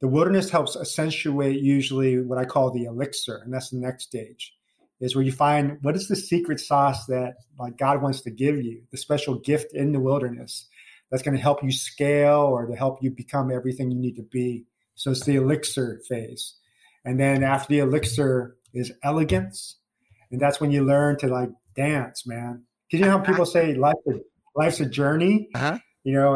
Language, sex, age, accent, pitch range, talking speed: English, male, 30-49, American, 125-145 Hz, 200 wpm